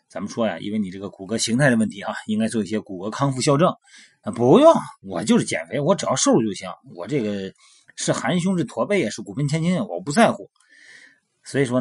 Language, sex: Chinese, male